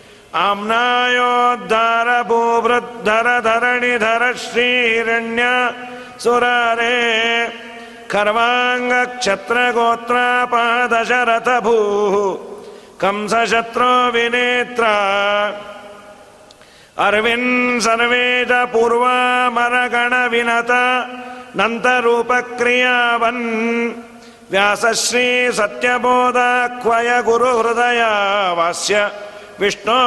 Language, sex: Kannada, male